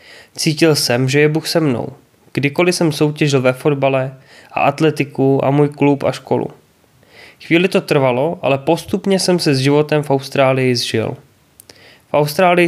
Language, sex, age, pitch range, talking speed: Czech, male, 20-39, 135-165 Hz, 155 wpm